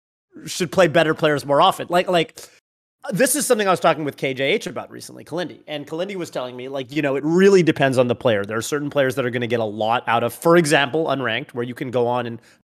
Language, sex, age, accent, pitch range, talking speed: English, male, 30-49, American, 125-160 Hz, 260 wpm